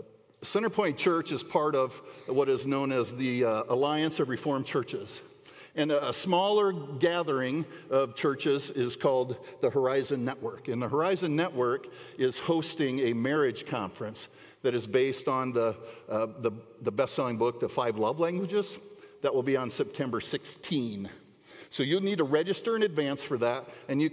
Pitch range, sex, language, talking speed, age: 125-175 Hz, male, English, 165 wpm, 50-69